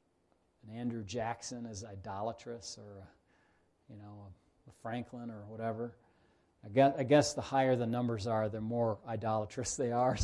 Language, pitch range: English, 115-140 Hz